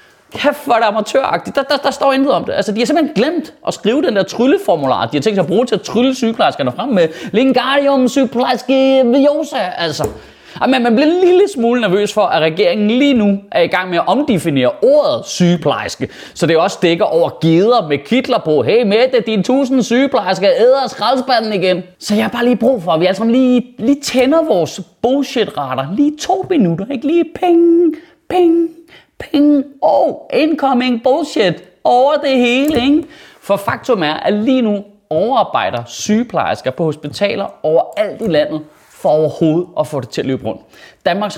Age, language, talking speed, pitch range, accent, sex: 30-49, Danish, 190 wpm, 175-275 Hz, native, male